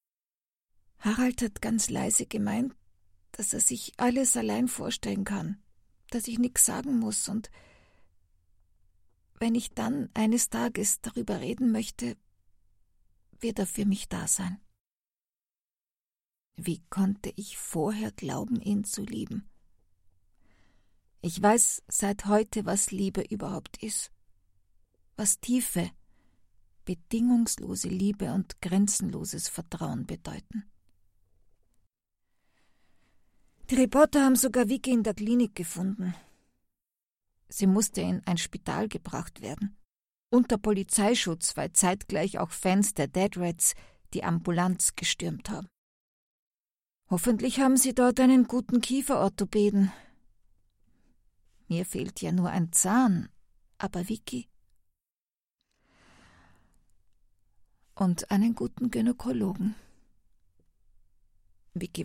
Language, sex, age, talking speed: German, female, 50-69, 100 wpm